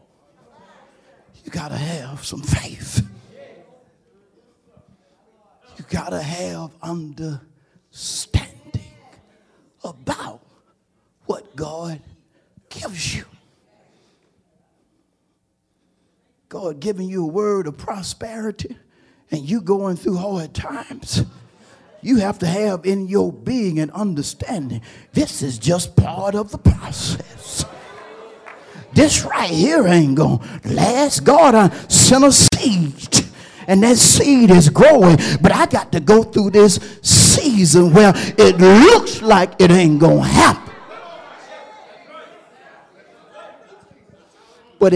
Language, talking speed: English, 105 wpm